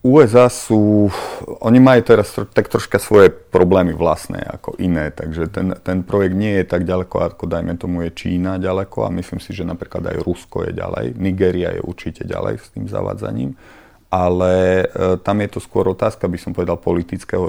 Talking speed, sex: 180 wpm, male